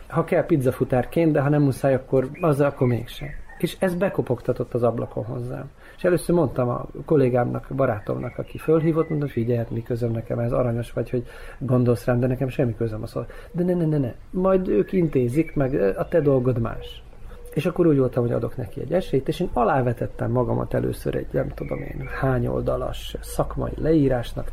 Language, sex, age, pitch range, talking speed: Hungarian, male, 40-59, 120-150 Hz, 190 wpm